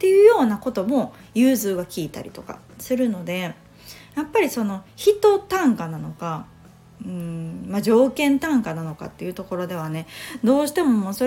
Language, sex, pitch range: Japanese, female, 175-260 Hz